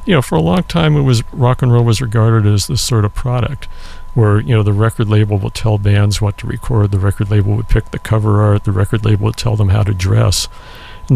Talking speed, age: 260 wpm, 50-69